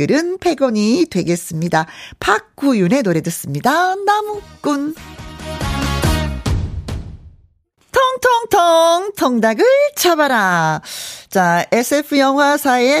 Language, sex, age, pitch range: Korean, female, 40-59, 185-310 Hz